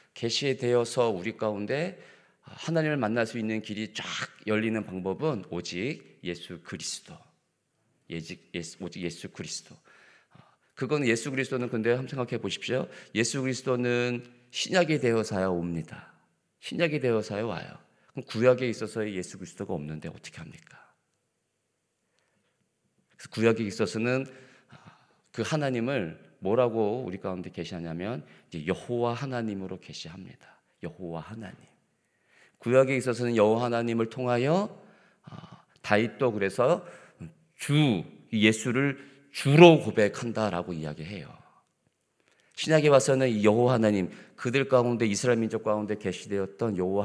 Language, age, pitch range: Korean, 40-59, 100-130 Hz